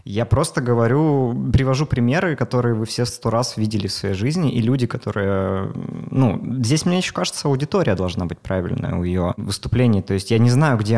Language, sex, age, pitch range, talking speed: Russian, male, 20-39, 100-125 Hz, 190 wpm